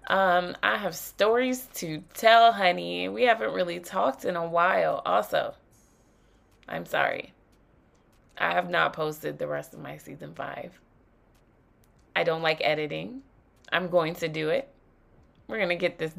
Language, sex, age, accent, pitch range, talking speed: English, female, 20-39, American, 145-230 Hz, 150 wpm